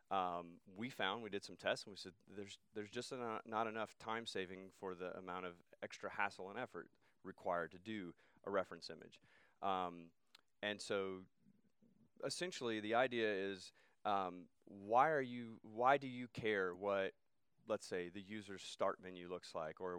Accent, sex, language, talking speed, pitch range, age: American, male, English, 170 wpm, 95-120 Hz, 30-49